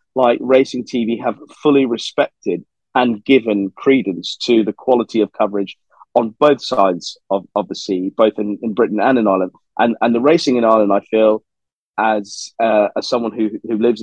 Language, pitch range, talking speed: English, 105-130 Hz, 185 wpm